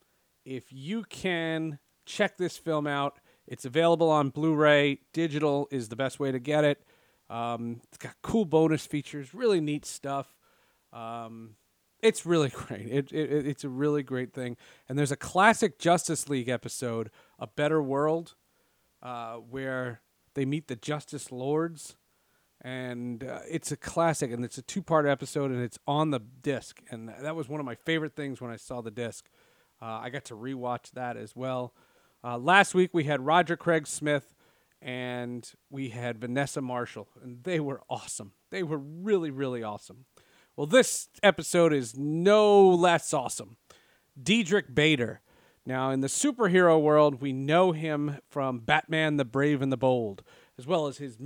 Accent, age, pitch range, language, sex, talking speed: American, 40-59, 125-160 Hz, English, male, 165 wpm